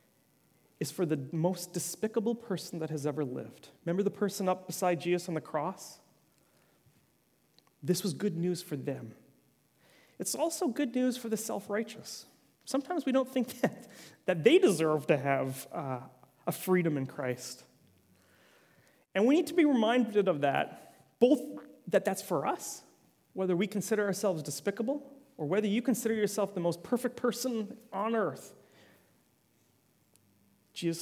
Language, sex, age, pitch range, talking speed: English, male, 30-49, 155-225 Hz, 150 wpm